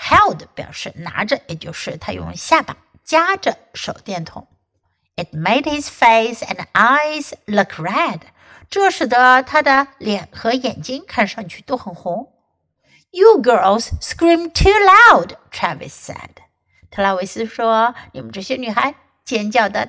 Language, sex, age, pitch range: Chinese, female, 60-79, 205-295 Hz